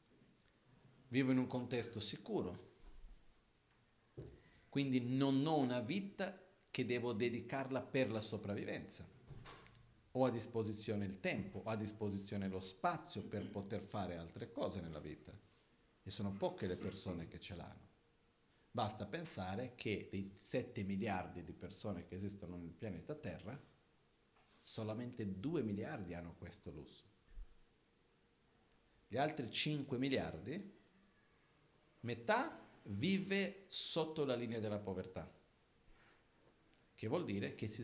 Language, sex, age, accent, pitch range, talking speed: Italian, male, 50-69, native, 95-130 Hz, 120 wpm